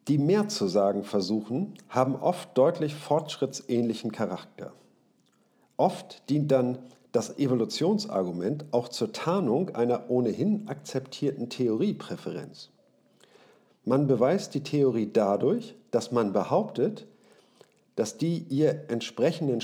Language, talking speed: German, 105 wpm